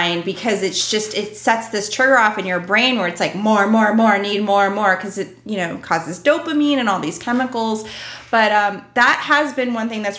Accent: American